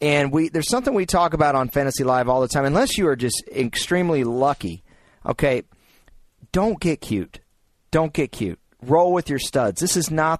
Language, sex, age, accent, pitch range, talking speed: English, male, 40-59, American, 115-155 Hz, 190 wpm